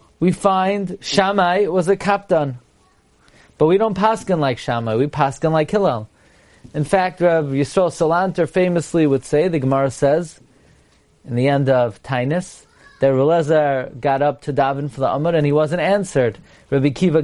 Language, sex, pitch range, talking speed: English, male, 135-180 Hz, 165 wpm